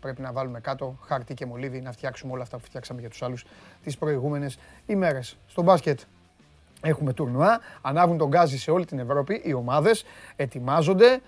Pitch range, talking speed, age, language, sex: 150-205 Hz, 175 wpm, 30-49, Greek, male